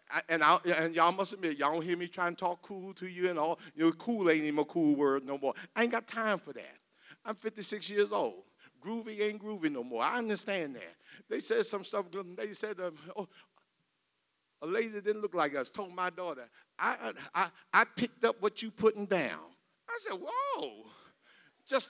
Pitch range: 175-230 Hz